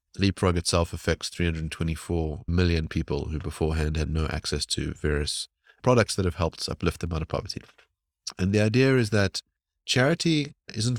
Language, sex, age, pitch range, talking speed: English, male, 30-49, 90-105 Hz, 160 wpm